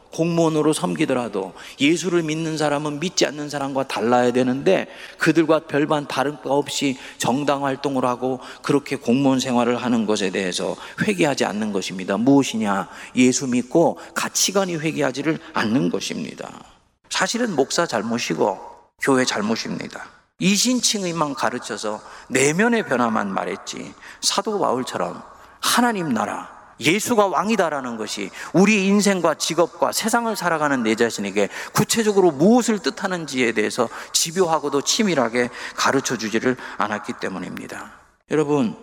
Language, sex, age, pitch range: Korean, male, 40-59, 120-165 Hz